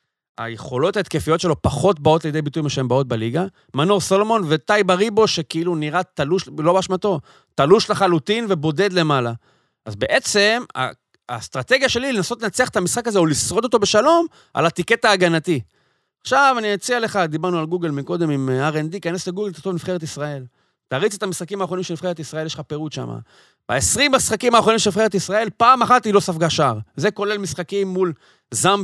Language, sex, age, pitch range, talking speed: Hebrew, male, 30-49, 155-205 Hz, 45 wpm